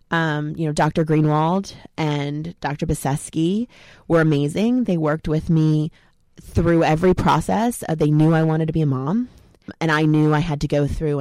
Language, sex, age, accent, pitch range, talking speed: English, female, 20-39, American, 150-180 Hz, 180 wpm